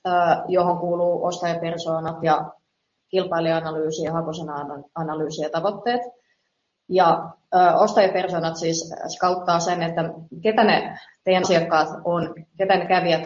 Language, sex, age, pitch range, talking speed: Finnish, female, 20-39, 160-190 Hz, 105 wpm